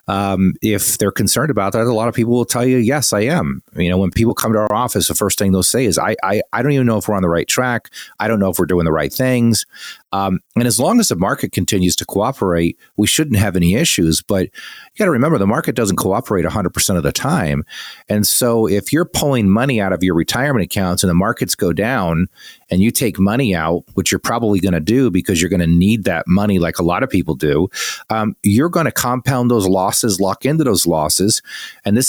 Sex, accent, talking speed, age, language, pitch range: male, American, 250 wpm, 40-59, English, 90-115 Hz